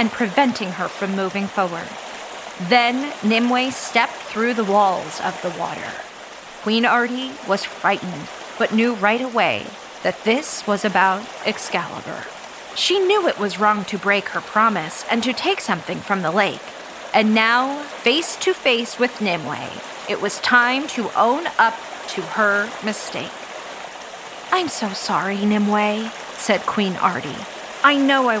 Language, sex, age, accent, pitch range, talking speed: English, female, 30-49, American, 200-240 Hz, 150 wpm